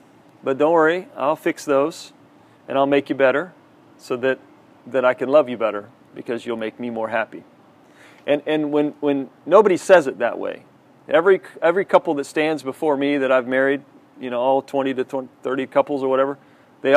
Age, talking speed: 40-59, 195 wpm